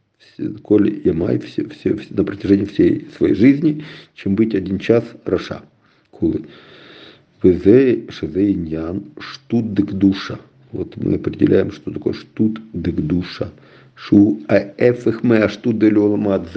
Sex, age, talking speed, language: male, 50-69, 110 wpm, English